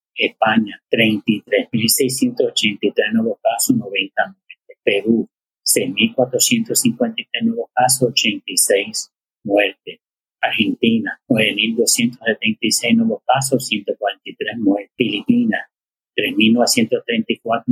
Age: 30-49